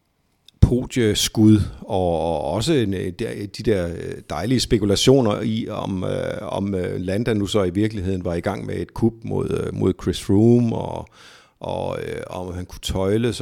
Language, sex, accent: Danish, male, native